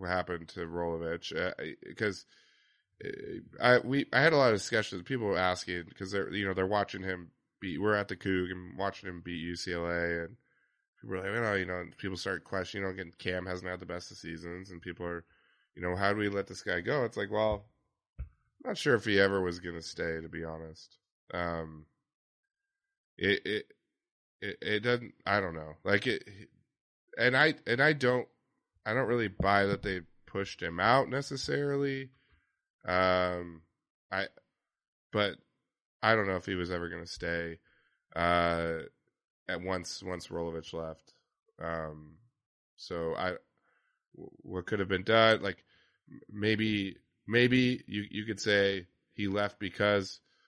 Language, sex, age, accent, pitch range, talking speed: English, male, 20-39, American, 85-105 Hz, 175 wpm